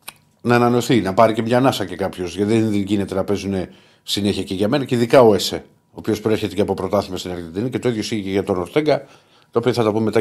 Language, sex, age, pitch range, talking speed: Greek, male, 50-69, 100-115 Hz, 255 wpm